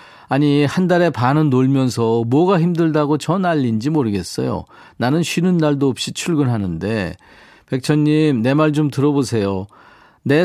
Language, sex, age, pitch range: Korean, male, 40-59, 125-165 Hz